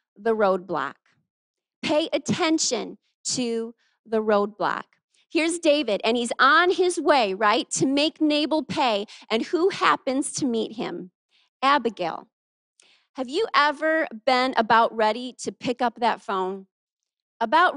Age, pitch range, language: 30-49, 225-305 Hz, English